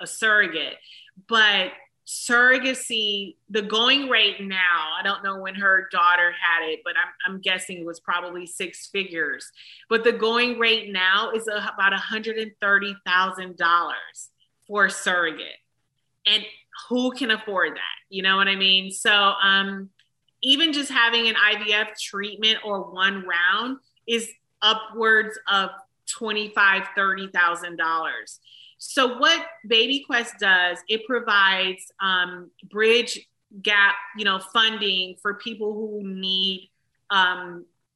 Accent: American